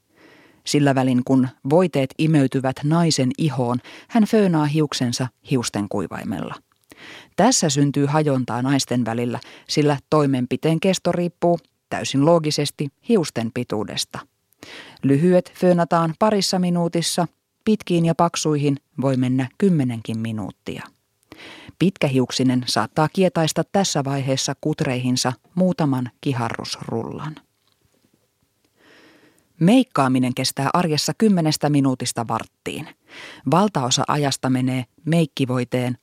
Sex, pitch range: female, 130-165 Hz